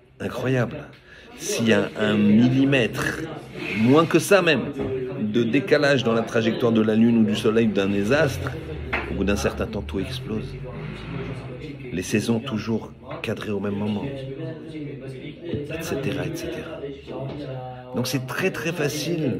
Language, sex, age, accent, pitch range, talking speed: French, male, 50-69, French, 110-145 Hz, 140 wpm